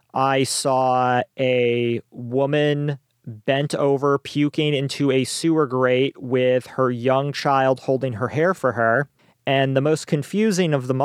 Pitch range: 125-150 Hz